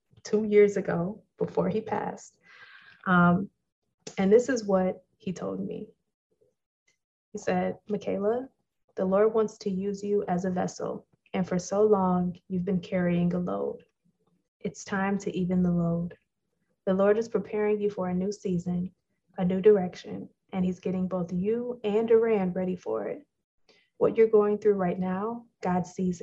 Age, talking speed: 20-39, 160 wpm